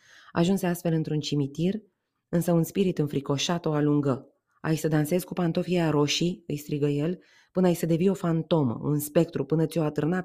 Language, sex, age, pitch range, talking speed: Romanian, female, 20-39, 145-175 Hz, 175 wpm